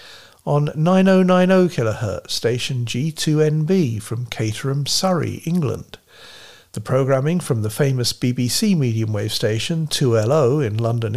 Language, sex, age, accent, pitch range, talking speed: English, male, 50-69, British, 115-155 Hz, 105 wpm